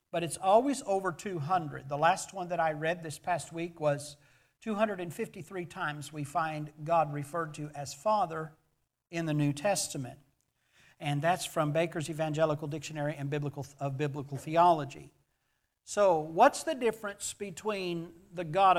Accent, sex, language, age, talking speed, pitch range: American, male, English, 50-69, 140 wpm, 150-190 Hz